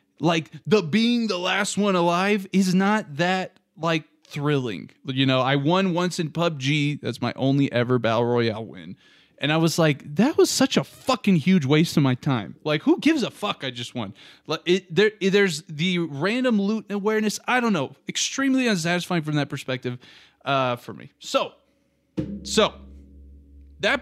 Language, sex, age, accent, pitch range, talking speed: English, male, 20-39, American, 135-185 Hz, 175 wpm